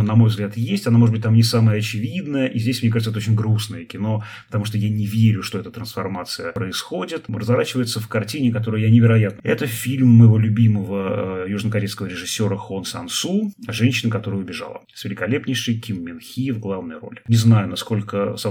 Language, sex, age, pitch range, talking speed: Russian, male, 30-49, 105-120 Hz, 185 wpm